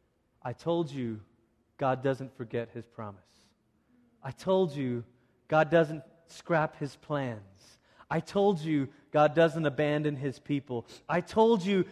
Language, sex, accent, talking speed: English, male, American, 135 wpm